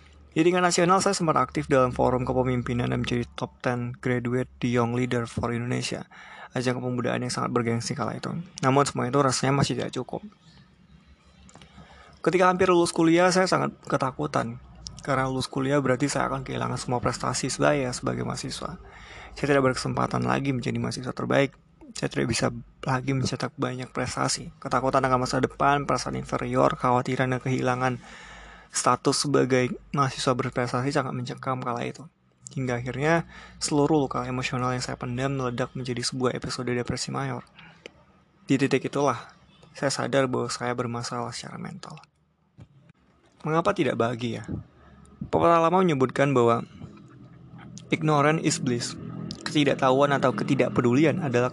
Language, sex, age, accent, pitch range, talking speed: Indonesian, male, 20-39, native, 125-145 Hz, 140 wpm